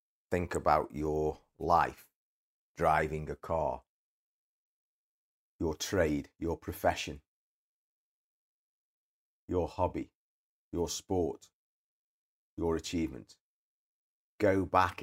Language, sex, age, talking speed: English, male, 40-59, 75 wpm